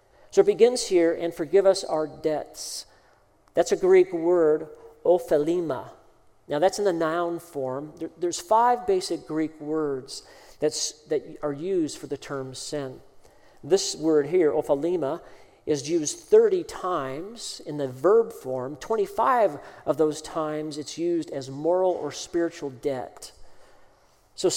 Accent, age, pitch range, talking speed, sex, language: American, 50-69, 150-195 Hz, 135 wpm, male, English